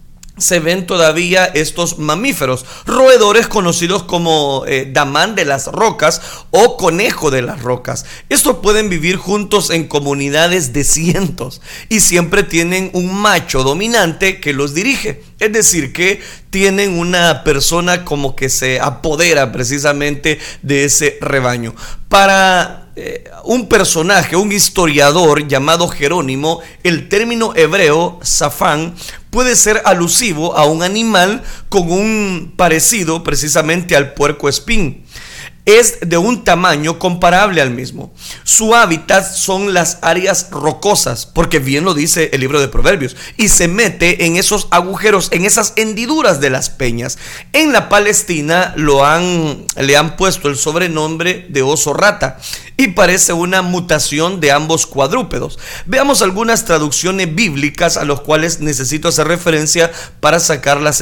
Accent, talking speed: Mexican, 135 wpm